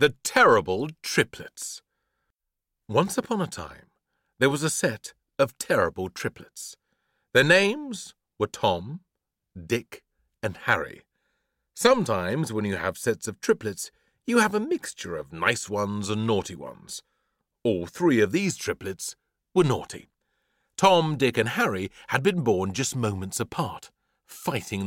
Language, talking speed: English, 135 wpm